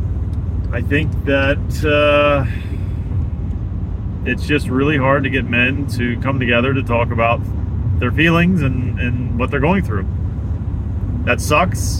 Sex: male